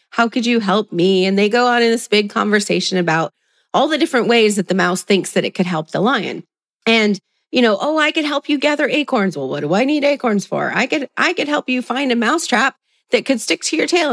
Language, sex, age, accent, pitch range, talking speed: English, female, 30-49, American, 190-250 Hz, 260 wpm